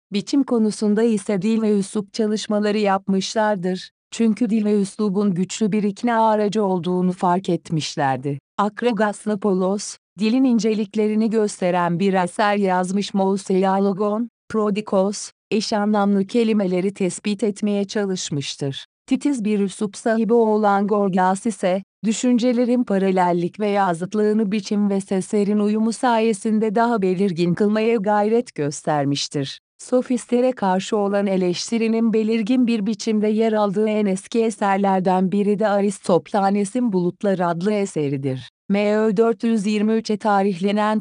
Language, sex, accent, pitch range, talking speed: Turkish, female, native, 190-220 Hz, 115 wpm